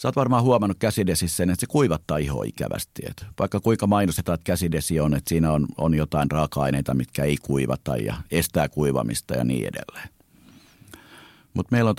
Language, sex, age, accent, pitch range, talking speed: Finnish, male, 50-69, native, 75-110 Hz, 175 wpm